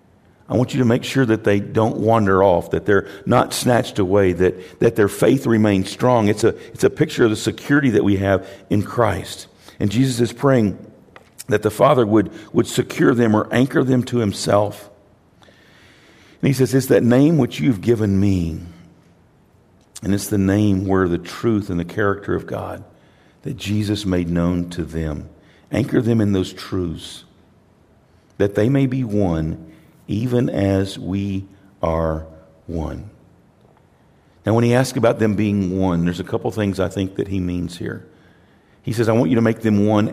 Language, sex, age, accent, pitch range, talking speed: English, male, 50-69, American, 95-120 Hz, 180 wpm